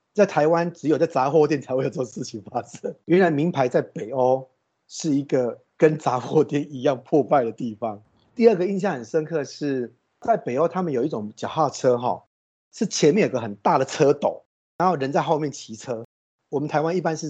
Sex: male